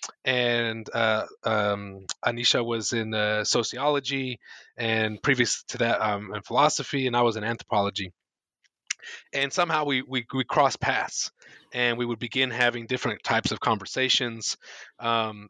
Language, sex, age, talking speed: English, male, 20-39, 145 wpm